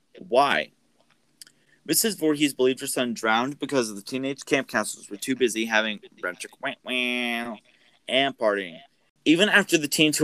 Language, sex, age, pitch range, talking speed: English, male, 20-39, 115-155 Hz, 150 wpm